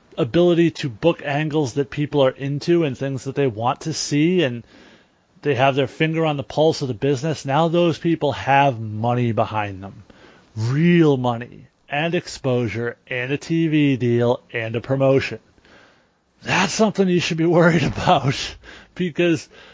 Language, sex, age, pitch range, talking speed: English, male, 30-49, 120-150 Hz, 160 wpm